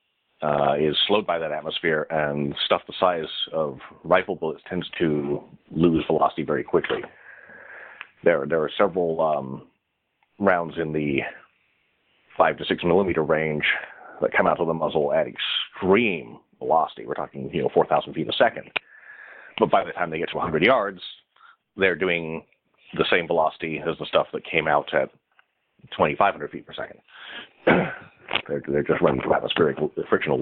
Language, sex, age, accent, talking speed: English, male, 40-59, American, 160 wpm